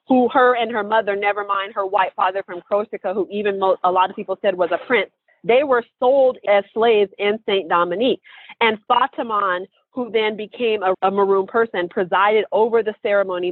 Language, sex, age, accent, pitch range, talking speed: English, female, 40-59, American, 185-220 Hz, 190 wpm